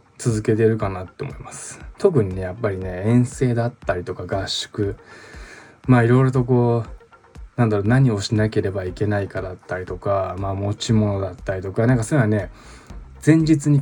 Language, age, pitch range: Japanese, 20-39, 100-130 Hz